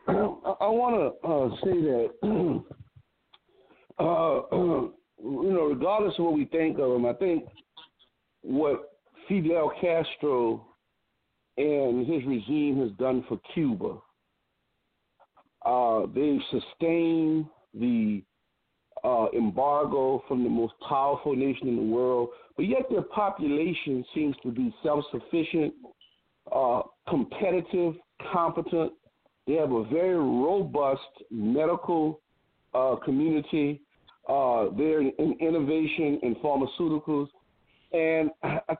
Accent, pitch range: American, 135-175 Hz